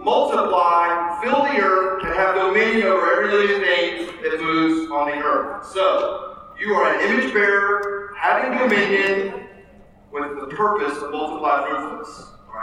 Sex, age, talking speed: male, 40-59, 145 wpm